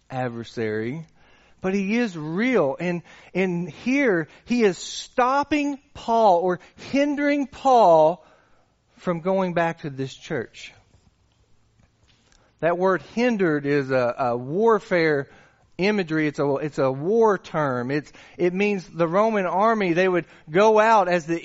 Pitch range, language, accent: 130-215 Hz, English, American